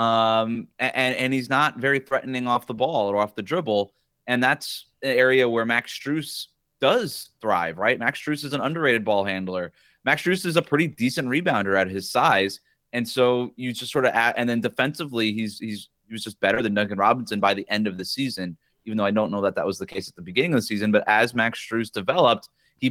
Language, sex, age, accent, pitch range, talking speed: English, male, 30-49, American, 105-135 Hz, 230 wpm